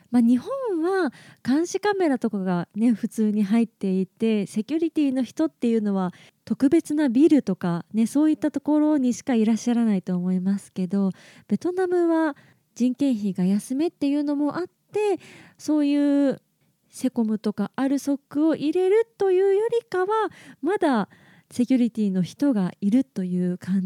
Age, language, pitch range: 20-39, Japanese, 200-310 Hz